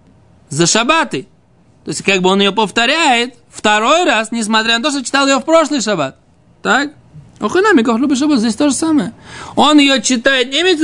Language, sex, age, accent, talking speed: Russian, male, 20-39, native, 165 wpm